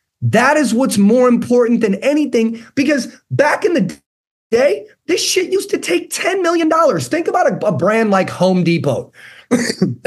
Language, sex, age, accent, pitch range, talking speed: English, male, 30-49, American, 175-220 Hz, 160 wpm